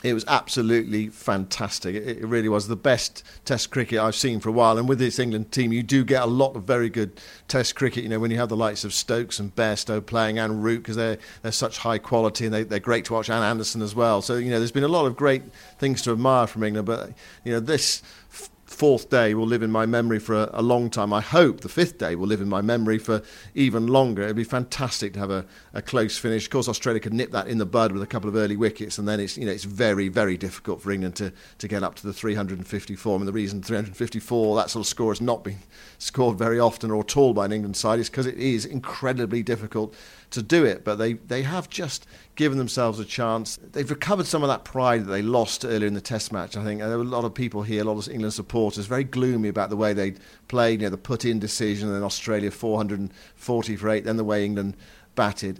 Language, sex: English, male